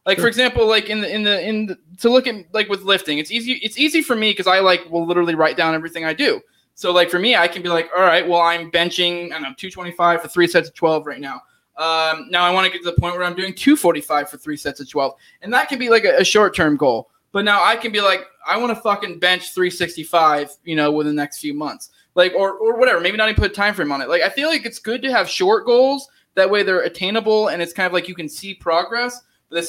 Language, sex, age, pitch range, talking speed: English, male, 20-39, 170-230 Hz, 285 wpm